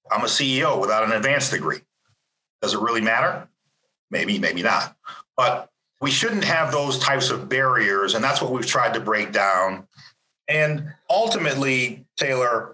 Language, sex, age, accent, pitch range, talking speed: English, male, 40-59, American, 110-145 Hz, 155 wpm